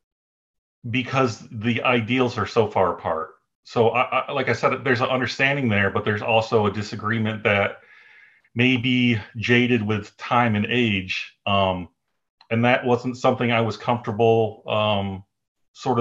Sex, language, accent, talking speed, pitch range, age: male, English, American, 140 wpm, 105-120 Hz, 40-59